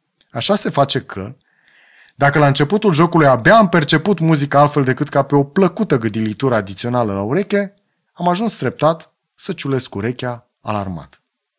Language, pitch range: Romanian, 120-165 Hz